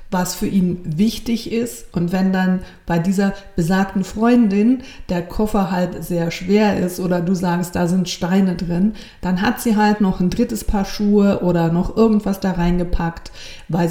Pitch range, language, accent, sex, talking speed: 175-215 Hz, German, German, female, 175 wpm